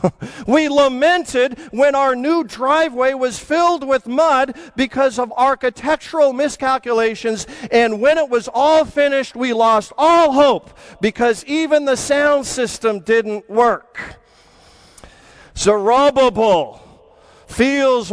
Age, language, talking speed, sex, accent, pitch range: 50-69, English, 110 wpm, male, American, 215-285 Hz